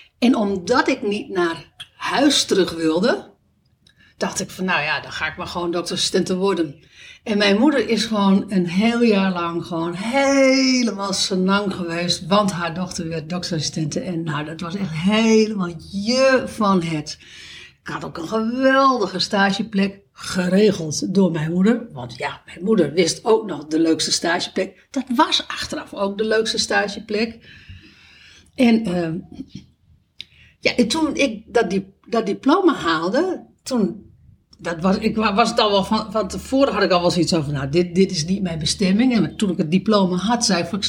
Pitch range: 175-235 Hz